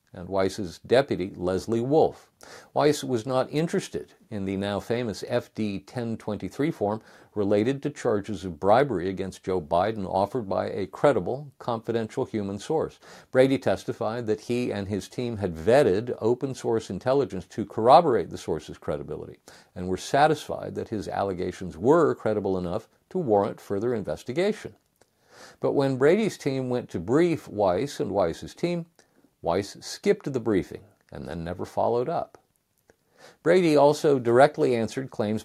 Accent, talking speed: American, 140 wpm